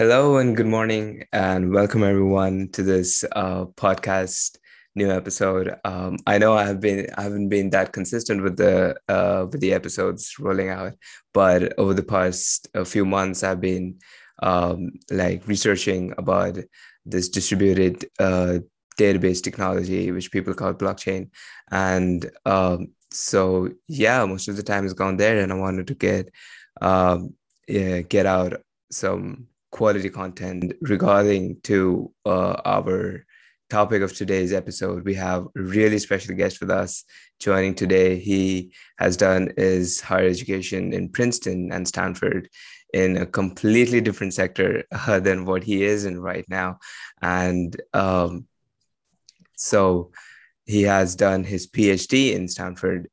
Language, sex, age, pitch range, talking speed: English, male, 20-39, 90-100 Hz, 145 wpm